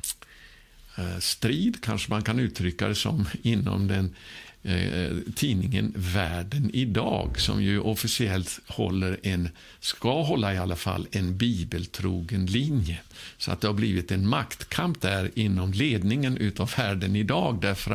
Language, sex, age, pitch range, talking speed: Swedish, male, 50-69, 95-115 Hz, 135 wpm